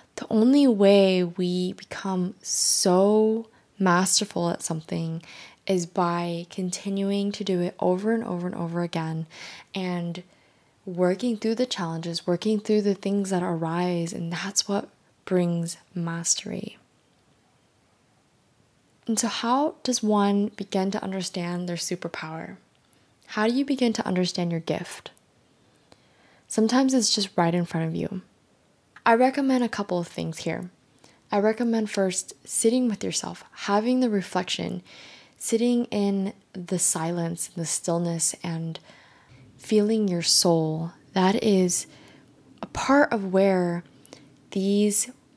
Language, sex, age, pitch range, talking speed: English, female, 20-39, 170-210 Hz, 125 wpm